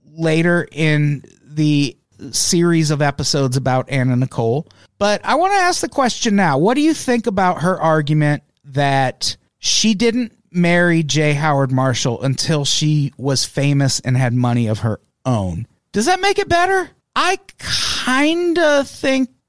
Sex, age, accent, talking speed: male, 40-59, American, 155 wpm